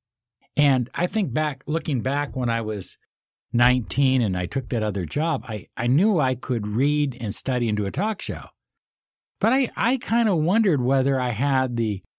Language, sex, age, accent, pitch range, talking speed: English, male, 60-79, American, 105-135 Hz, 190 wpm